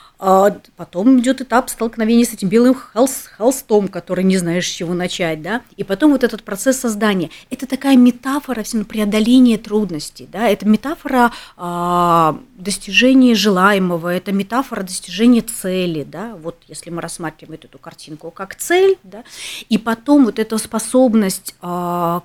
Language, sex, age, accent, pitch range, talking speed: Russian, female, 30-49, native, 175-235 Hz, 130 wpm